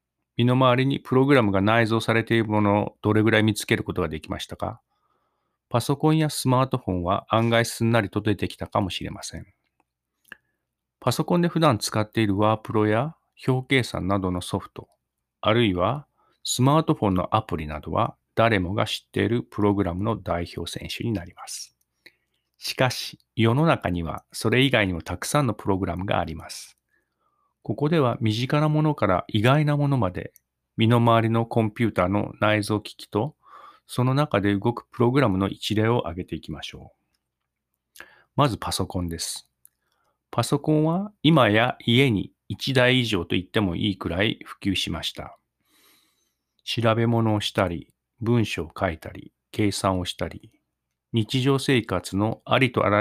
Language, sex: Japanese, male